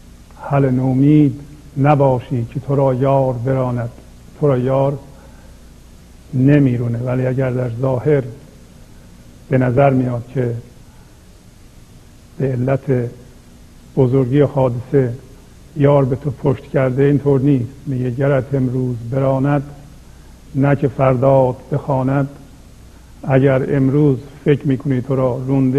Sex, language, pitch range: male, English, 130-140 Hz